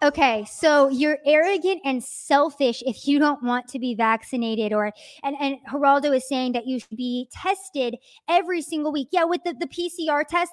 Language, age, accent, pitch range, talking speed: English, 20-39, American, 275-335 Hz, 190 wpm